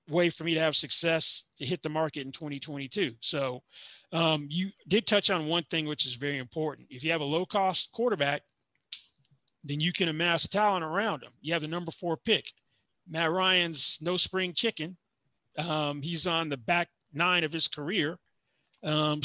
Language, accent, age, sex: English, American, 30-49, male